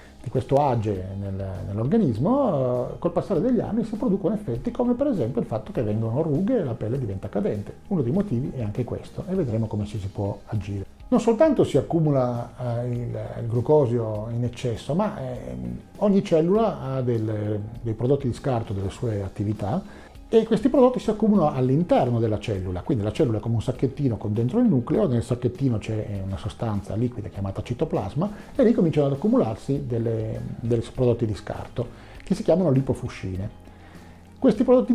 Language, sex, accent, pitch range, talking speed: Italian, male, native, 105-160 Hz, 165 wpm